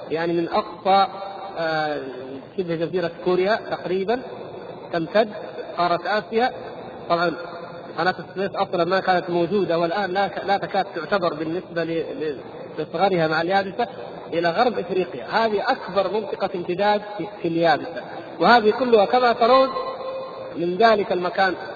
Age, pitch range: 40-59, 170-230 Hz